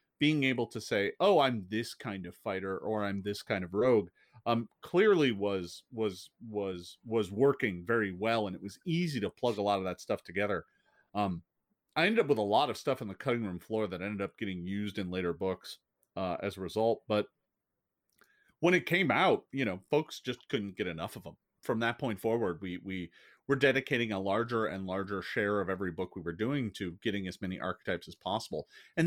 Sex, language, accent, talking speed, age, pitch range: male, English, American, 215 wpm, 40-59, 95-115 Hz